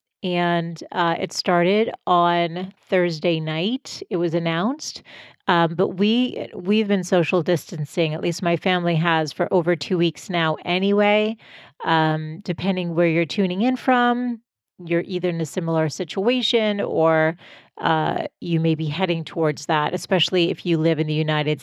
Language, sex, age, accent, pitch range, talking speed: English, female, 40-59, American, 165-200 Hz, 160 wpm